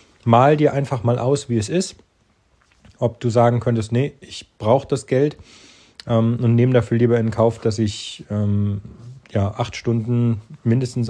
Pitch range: 110-125 Hz